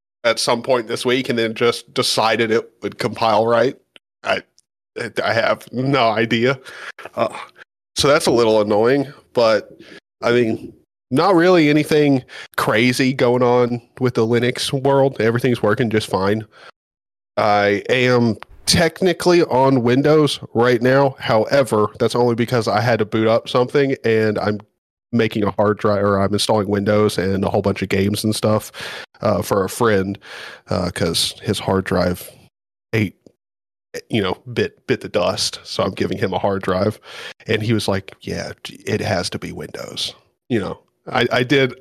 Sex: male